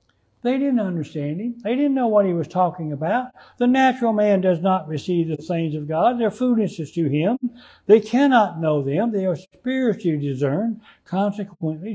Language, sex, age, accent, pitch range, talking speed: English, male, 60-79, American, 155-215 Hz, 175 wpm